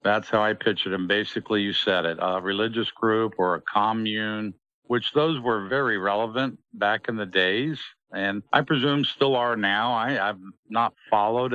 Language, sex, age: English, male, 50-69